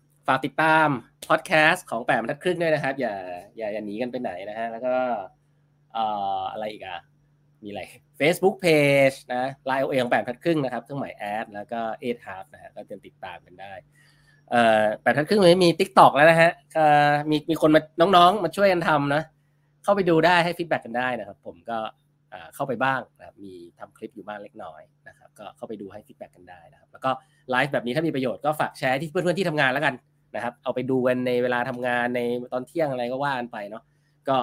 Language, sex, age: Thai, male, 20-39